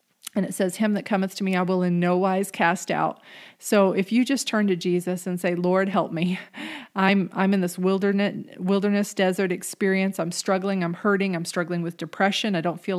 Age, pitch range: 40-59, 180-210 Hz